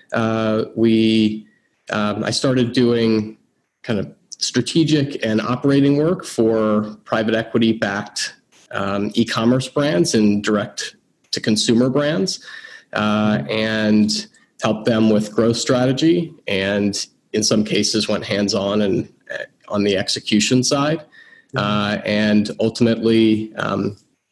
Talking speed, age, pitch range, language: 115 wpm, 30-49, 105-130 Hz, English